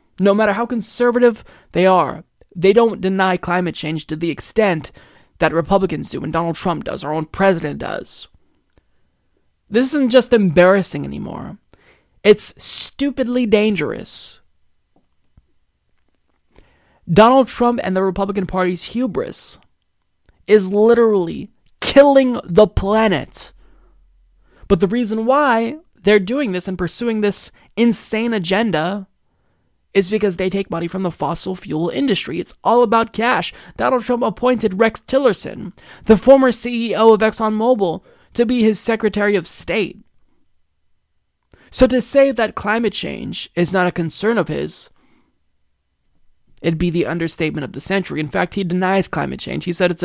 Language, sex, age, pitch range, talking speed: English, male, 20-39, 175-225 Hz, 140 wpm